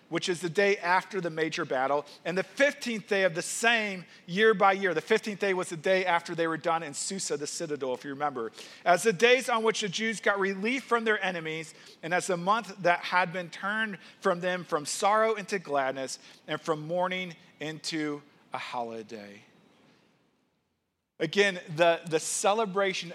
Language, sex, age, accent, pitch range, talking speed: English, male, 40-59, American, 160-205 Hz, 185 wpm